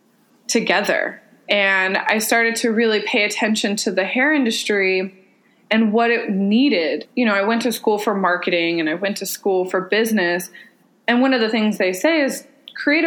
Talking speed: 185 wpm